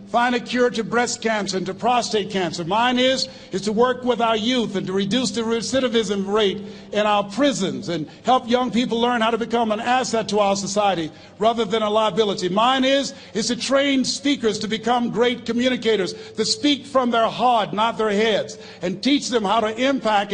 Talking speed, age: 200 wpm, 50-69